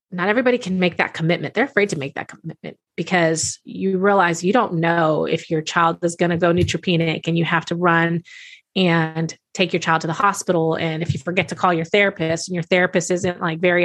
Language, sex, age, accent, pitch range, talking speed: English, female, 30-49, American, 170-210 Hz, 225 wpm